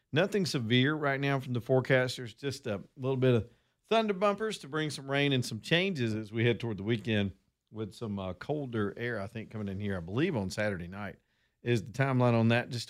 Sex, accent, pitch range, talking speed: male, American, 110-135 Hz, 225 wpm